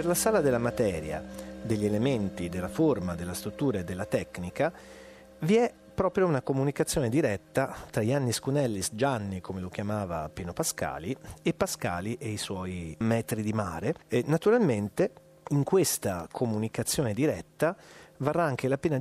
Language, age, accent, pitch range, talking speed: Italian, 40-59, native, 100-150 Hz, 150 wpm